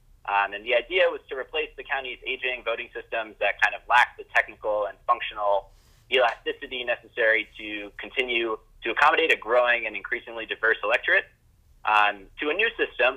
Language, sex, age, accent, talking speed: English, male, 30-49, American, 170 wpm